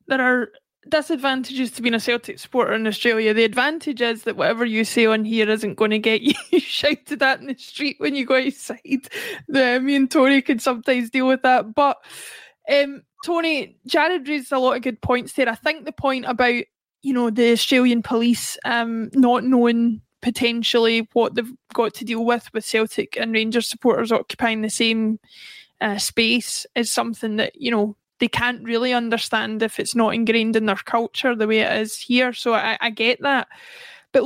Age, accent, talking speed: 20-39, British, 190 wpm